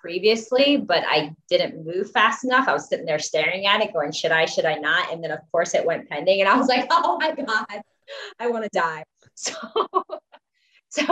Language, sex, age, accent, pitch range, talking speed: English, female, 20-39, American, 150-180 Hz, 215 wpm